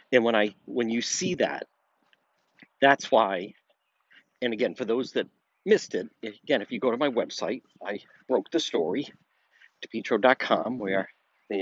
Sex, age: male, 60-79